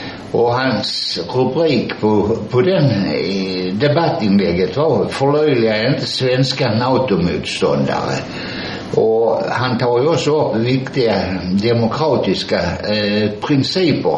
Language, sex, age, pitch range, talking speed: Swedish, male, 60-79, 105-135 Hz, 90 wpm